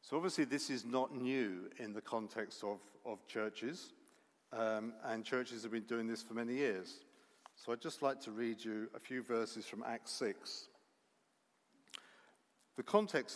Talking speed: 165 wpm